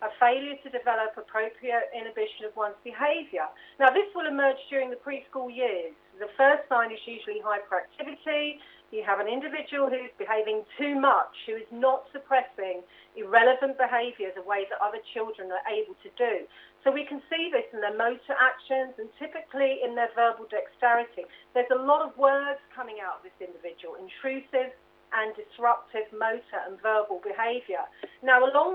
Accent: British